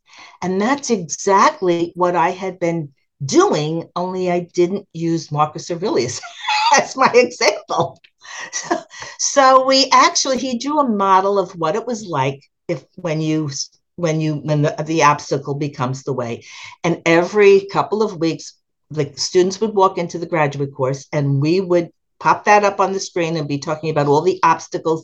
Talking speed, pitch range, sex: 170 wpm, 145-190 Hz, female